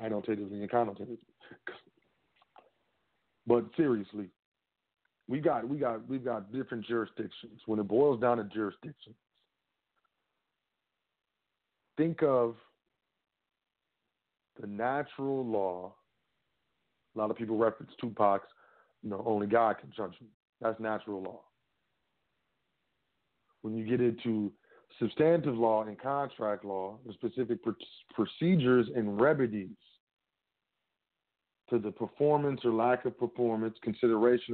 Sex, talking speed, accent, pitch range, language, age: male, 115 wpm, American, 105-125 Hz, English, 40-59